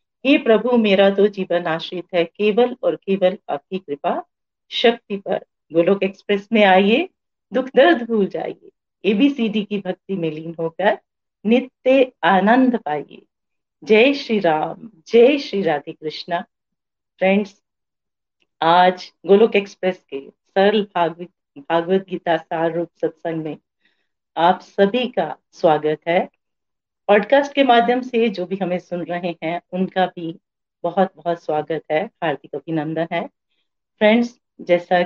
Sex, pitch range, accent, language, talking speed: female, 170-220 Hz, native, Hindi, 130 wpm